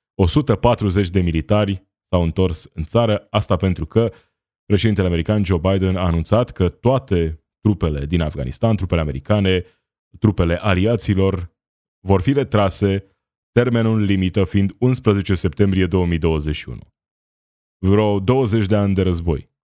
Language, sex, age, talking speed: Romanian, male, 20-39, 120 wpm